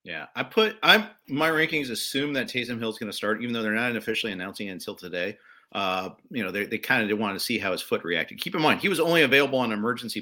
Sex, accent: male, American